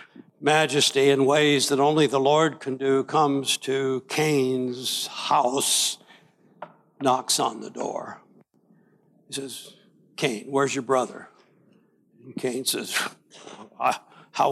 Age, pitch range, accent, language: 60-79, 140-220 Hz, American, English